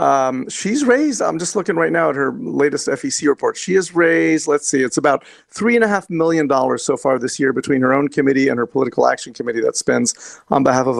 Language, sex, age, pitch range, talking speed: English, male, 40-59, 135-180 Hz, 240 wpm